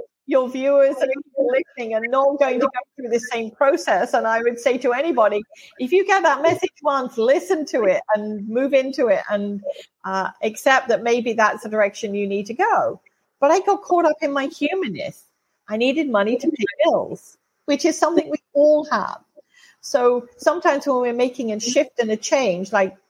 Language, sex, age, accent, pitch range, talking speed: English, female, 40-59, British, 210-285 Hz, 195 wpm